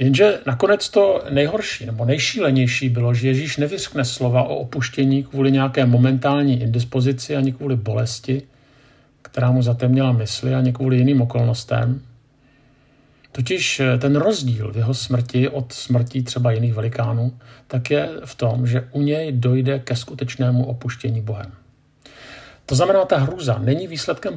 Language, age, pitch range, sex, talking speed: Czech, 50-69, 120-140 Hz, male, 140 wpm